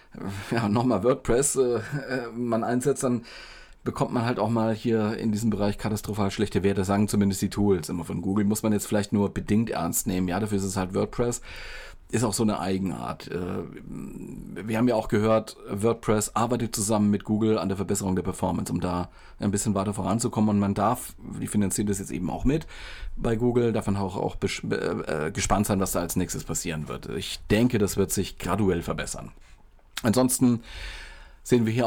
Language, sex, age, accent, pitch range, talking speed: German, male, 40-59, German, 100-130 Hz, 190 wpm